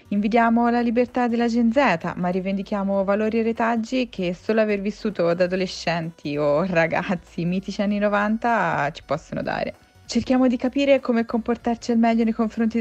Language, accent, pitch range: Italian, native, 170-225 Hz